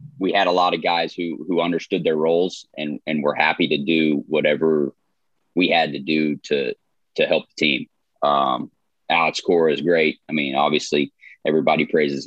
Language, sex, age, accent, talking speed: English, male, 20-39, American, 180 wpm